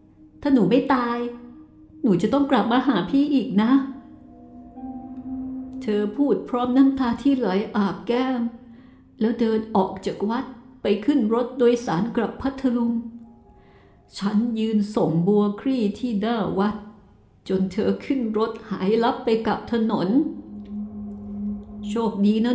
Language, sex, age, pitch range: Thai, female, 60-79, 205-260 Hz